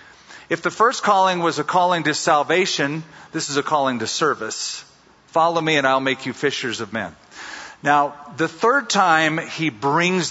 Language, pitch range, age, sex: English, 135-175 Hz, 50-69, male